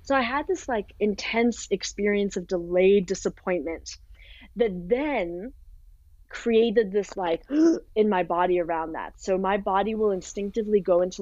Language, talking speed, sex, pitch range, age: English, 145 wpm, female, 180-215 Hz, 20-39